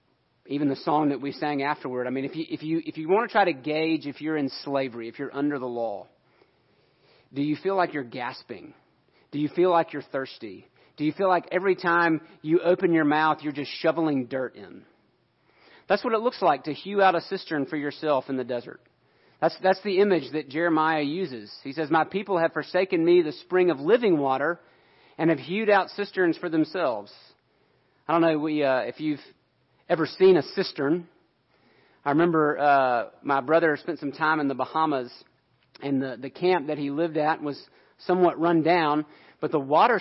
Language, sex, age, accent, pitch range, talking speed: English, male, 40-59, American, 145-180 Hz, 200 wpm